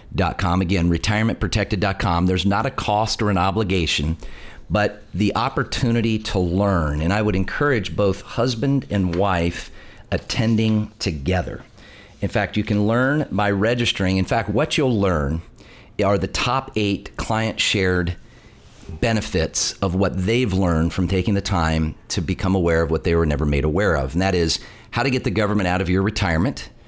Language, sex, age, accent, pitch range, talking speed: English, male, 40-59, American, 85-110 Hz, 165 wpm